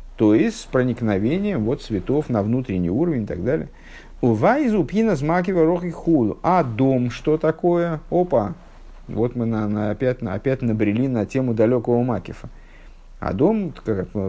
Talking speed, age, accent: 130 wpm, 50-69, native